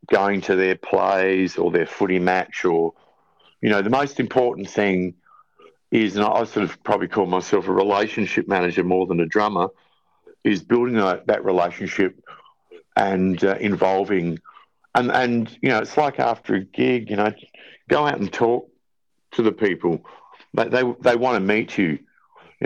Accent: Australian